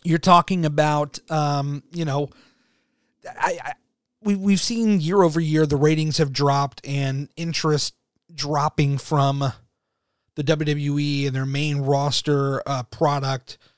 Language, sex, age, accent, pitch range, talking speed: English, male, 30-49, American, 140-165 Hz, 130 wpm